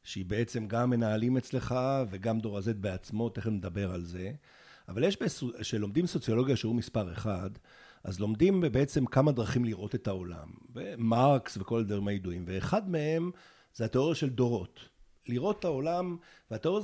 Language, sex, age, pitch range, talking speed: Hebrew, male, 50-69, 105-135 Hz, 145 wpm